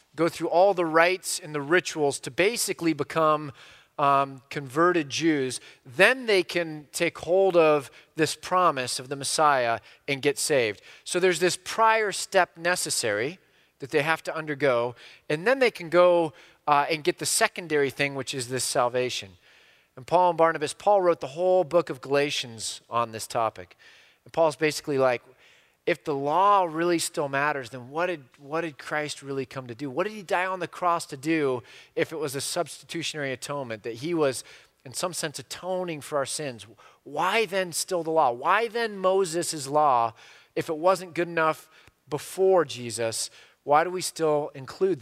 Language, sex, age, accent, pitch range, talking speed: English, male, 30-49, American, 140-180 Hz, 180 wpm